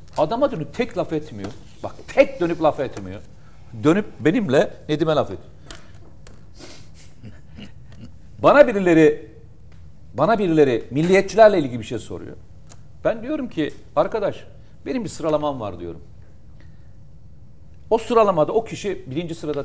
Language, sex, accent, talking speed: Turkish, male, native, 120 wpm